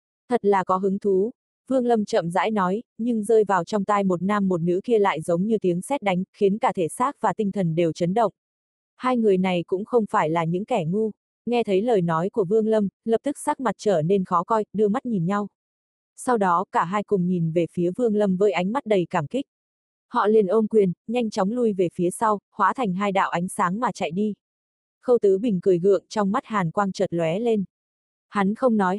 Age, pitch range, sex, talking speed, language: 20-39, 185-225 Hz, female, 240 wpm, Vietnamese